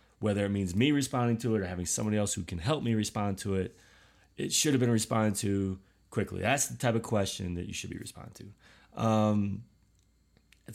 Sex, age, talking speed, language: male, 30-49, 210 wpm, English